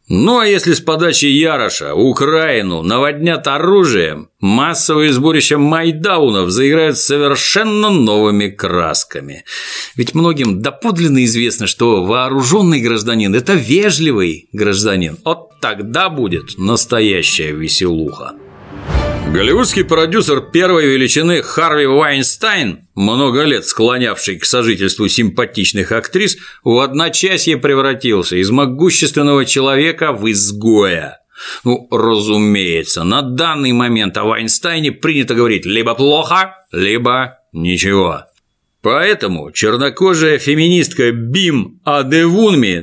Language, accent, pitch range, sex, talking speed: Russian, native, 115-165 Hz, male, 100 wpm